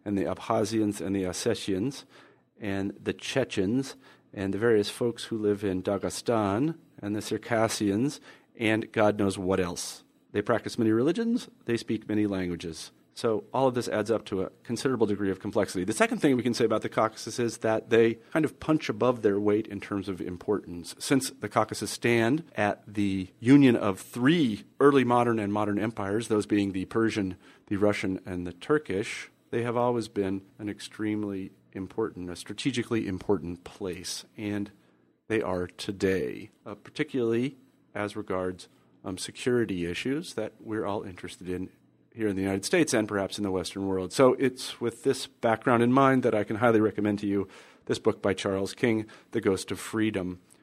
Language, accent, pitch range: English, American, 95-115 Hz